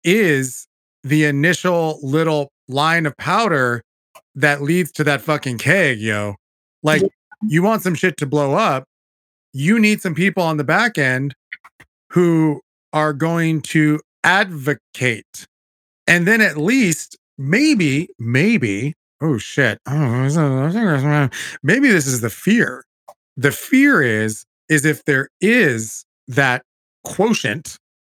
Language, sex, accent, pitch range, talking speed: English, male, American, 130-180 Hz, 120 wpm